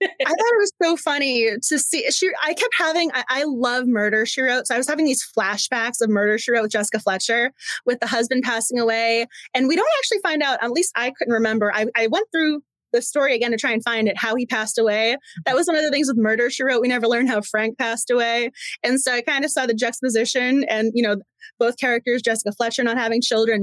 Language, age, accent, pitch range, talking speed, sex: English, 20-39, American, 225-290 Hz, 245 wpm, female